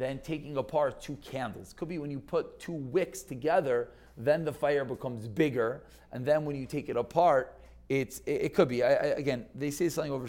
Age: 40-59